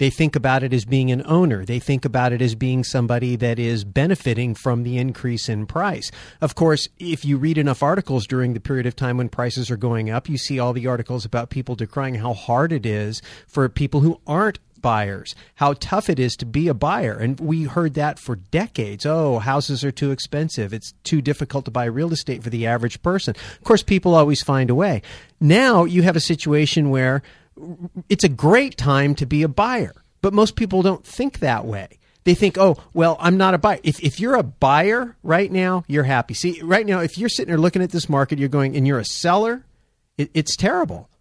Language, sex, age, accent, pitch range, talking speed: English, male, 40-59, American, 125-165 Hz, 220 wpm